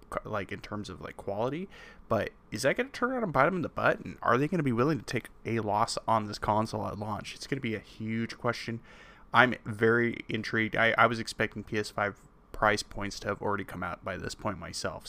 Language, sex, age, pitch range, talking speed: English, male, 20-39, 110-135 Hz, 240 wpm